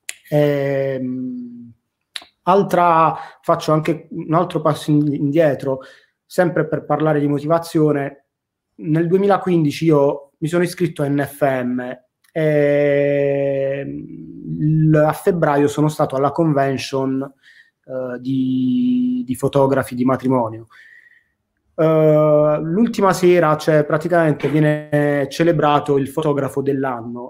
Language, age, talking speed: Italian, 30-49, 100 wpm